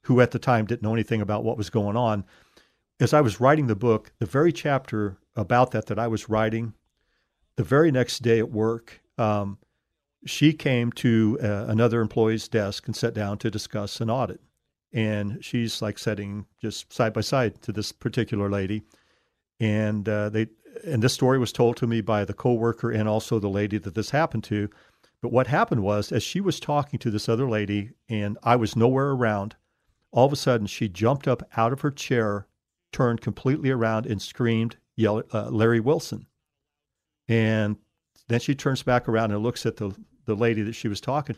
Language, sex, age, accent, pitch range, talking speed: English, male, 50-69, American, 105-125 Hz, 195 wpm